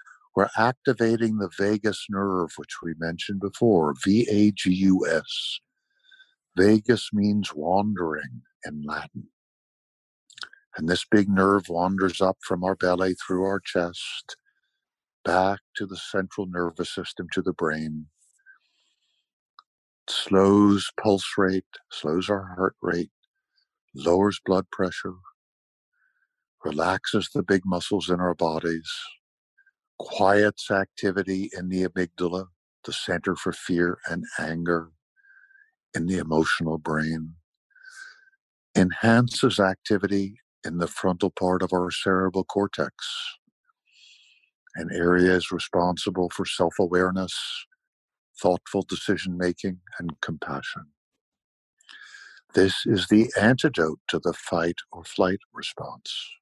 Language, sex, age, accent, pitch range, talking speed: English, male, 60-79, American, 90-120 Hz, 105 wpm